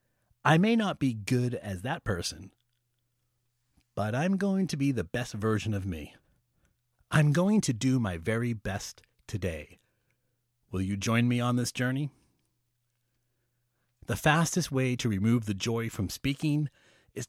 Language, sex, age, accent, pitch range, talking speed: English, male, 30-49, American, 105-135 Hz, 150 wpm